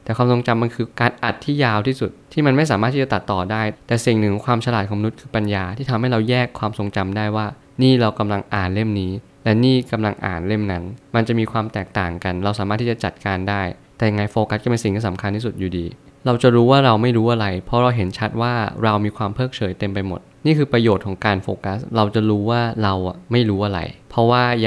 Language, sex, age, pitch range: Thai, male, 20-39, 100-120 Hz